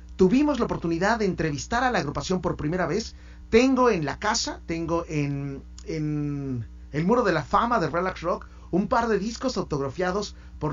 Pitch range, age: 145-185 Hz, 40-59